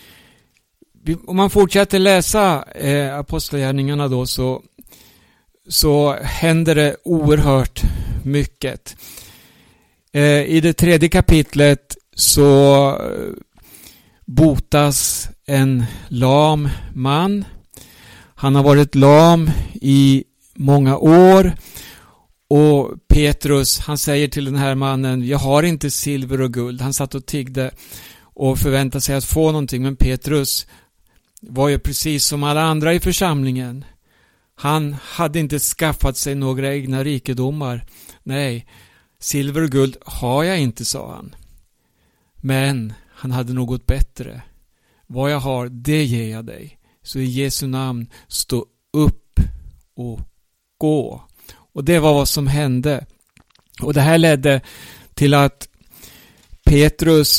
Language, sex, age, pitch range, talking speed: Swedish, male, 60-79, 130-150 Hz, 120 wpm